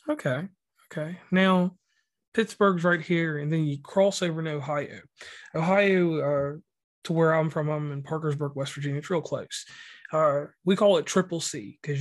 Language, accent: English, American